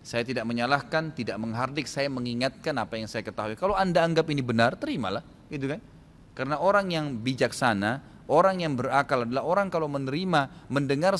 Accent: native